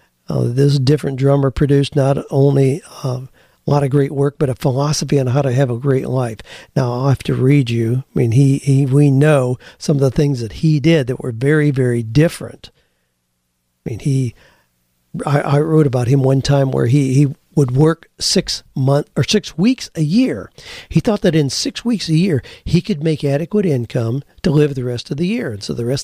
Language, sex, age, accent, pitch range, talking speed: English, male, 50-69, American, 130-160 Hz, 215 wpm